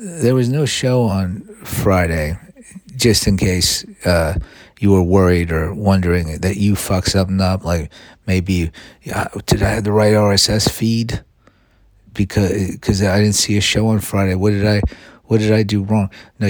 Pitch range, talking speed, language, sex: 95-105 Hz, 180 wpm, English, male